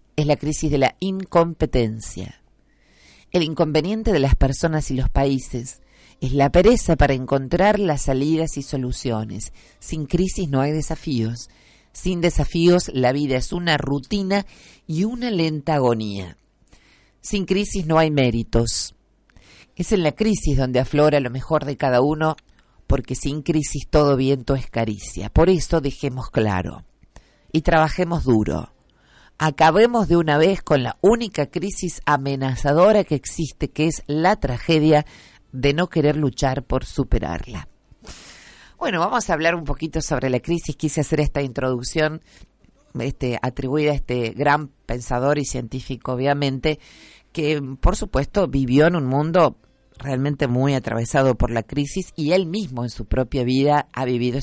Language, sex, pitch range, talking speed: Spanish, female, 130-160 Hz, 145 wpm